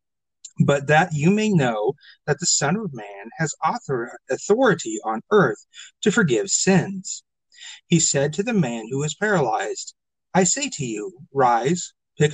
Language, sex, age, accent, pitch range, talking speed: English, male, 40-59, American, 140-195 Hz, 150 wpm